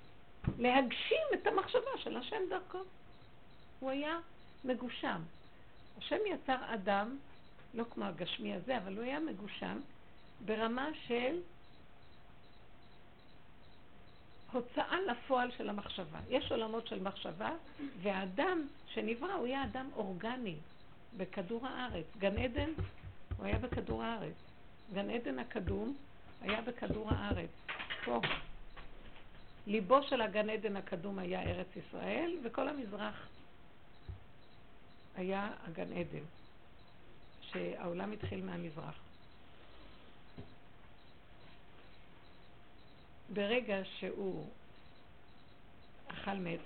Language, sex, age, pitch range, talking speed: Hebrew, female, 50-69, 190-260 Hz, 90 wpm